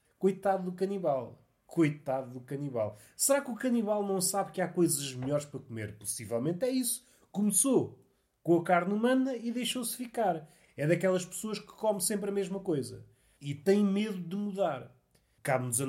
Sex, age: male, 30-49